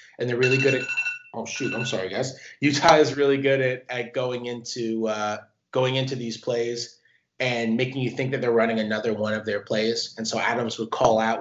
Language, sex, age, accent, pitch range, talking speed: English, male, 20-39, American, 110-135 Hz, 215 wpm